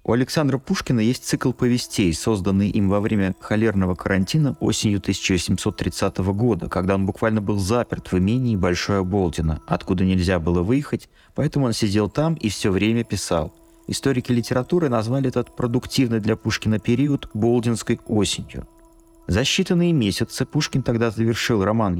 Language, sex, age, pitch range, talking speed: Russian, male, 30-49, 100-140 Hz, 145 wpm